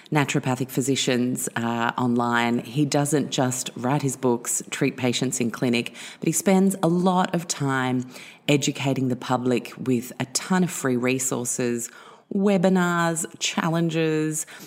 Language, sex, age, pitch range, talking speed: English, female, 30-49, 125-160 Hz, 130 wpm